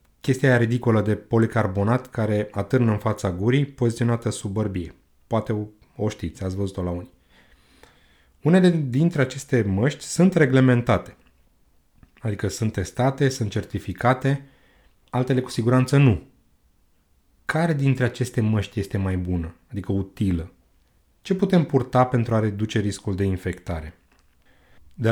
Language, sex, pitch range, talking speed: Romanian, male, 100-135 Hz, 130 wpm